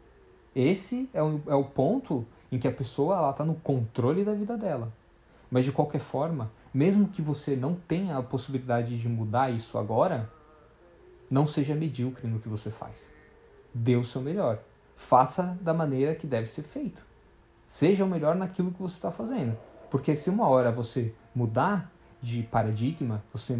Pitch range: 125-180 Hz